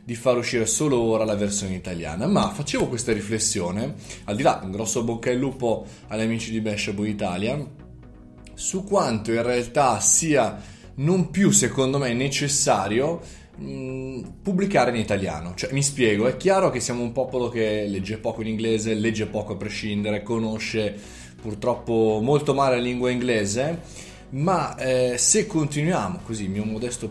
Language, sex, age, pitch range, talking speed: Italian, male, 20-39, 105-130 Hz, 155 wpm